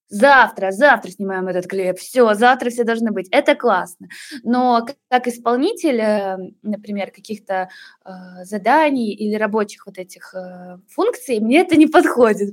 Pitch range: 210-265 Hz